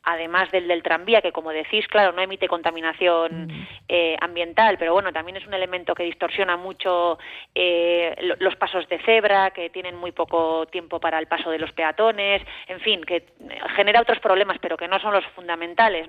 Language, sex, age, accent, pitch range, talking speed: Spanish, female, 20-39, Spanish, 175-215 Hz, 185 wpm